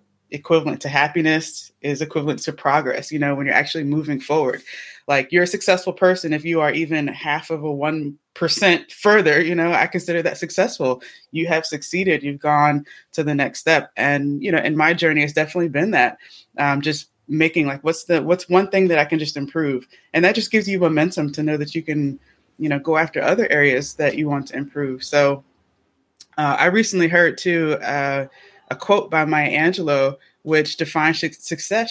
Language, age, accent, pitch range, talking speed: English, 20-39, American, 145-165 Hz, 195 wpm